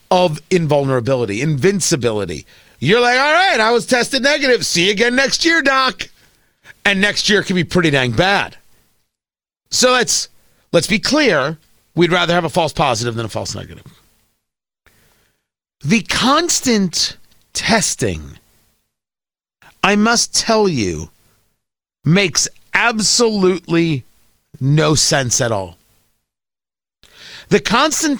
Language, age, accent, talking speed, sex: English, 40-59, American, 115 wpm, male